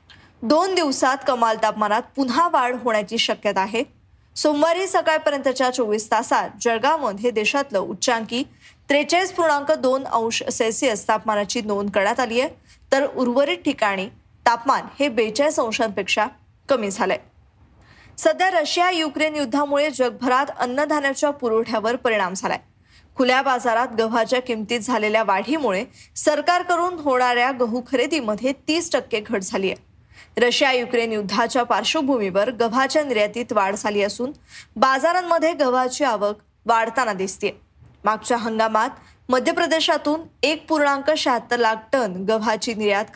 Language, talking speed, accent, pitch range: Marathi, 90 wpm, native, 220-290 Hz